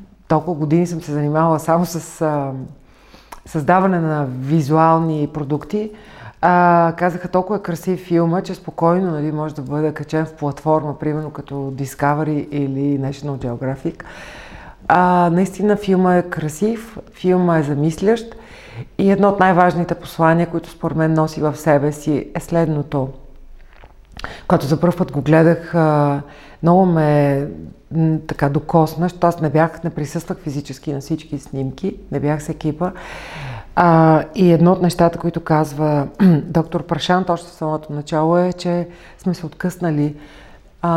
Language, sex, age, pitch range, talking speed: Bulgarian, female, 40-59, 145-175 Hz, 145 wpm